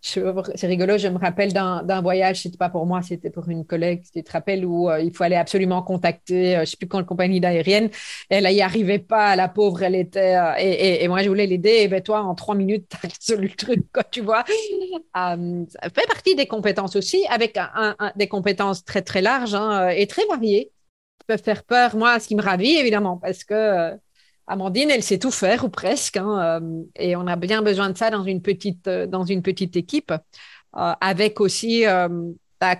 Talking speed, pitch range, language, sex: 230 wpm, 180-220 Hz, French, female